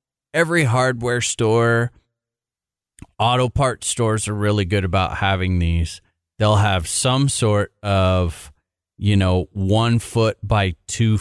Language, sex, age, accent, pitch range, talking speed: English, male, 30-49, American, 90-110 Hz, 125 wpm